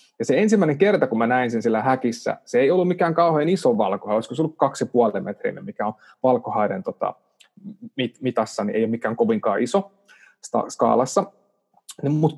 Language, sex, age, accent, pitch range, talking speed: Finnish, male, 20-39, native, 110-155 Hz, 160 wpm